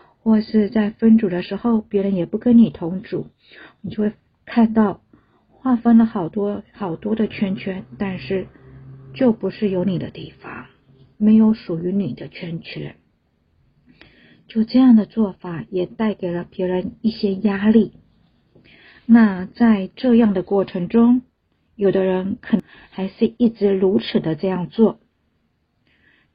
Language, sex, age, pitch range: Chinese, female, 50-69, 185-225 Hz